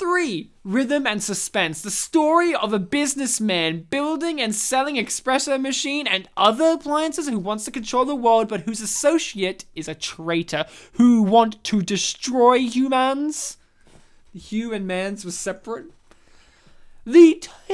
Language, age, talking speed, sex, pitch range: English, 20-39, 140 wpm, male, 205-285 Hz